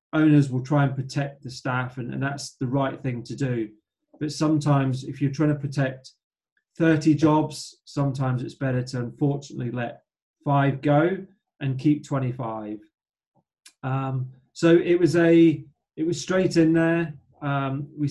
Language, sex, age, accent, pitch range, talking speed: English, male, 30-49, British, 130-150 Hz, 155 wpm